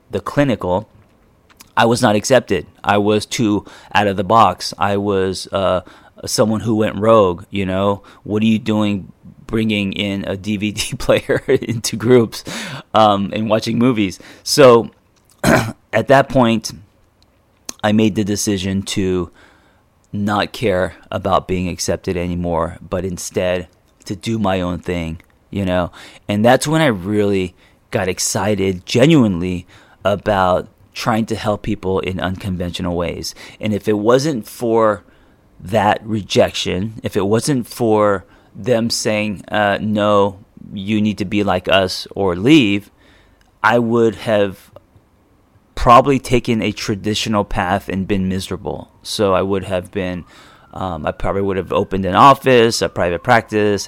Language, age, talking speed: English, 30-49, 140 wpm